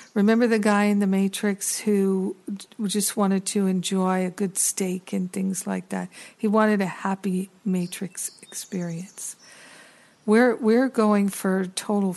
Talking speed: 145 wpm